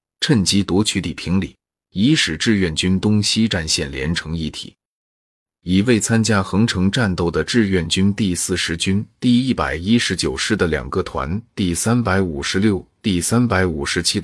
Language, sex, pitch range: Chinese, male, 85-110 Hz